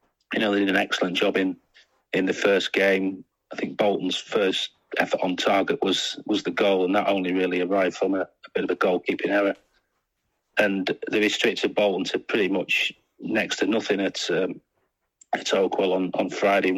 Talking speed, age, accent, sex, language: 190 wpm, 40-59, British, male, English